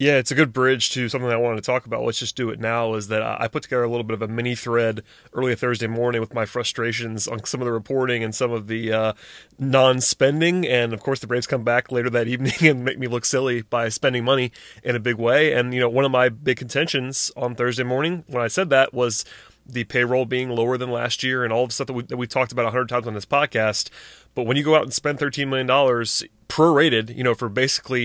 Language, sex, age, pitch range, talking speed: English, male, 30-49, 115-135 Hz, 260 wpm